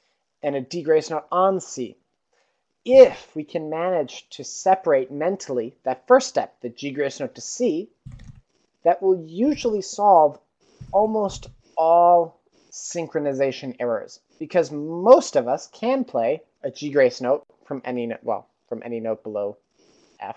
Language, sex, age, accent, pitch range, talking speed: English, male, 30-49, American, 120-175 Hz, 145 wpm